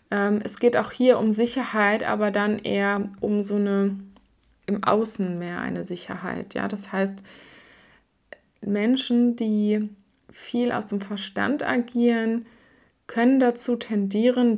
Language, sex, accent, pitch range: German, female, German, 195-225 Hz